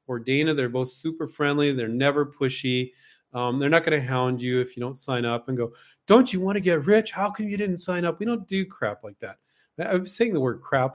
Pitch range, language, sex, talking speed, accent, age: 120-150 Hz, English, male, 250 wpm, American, 40-59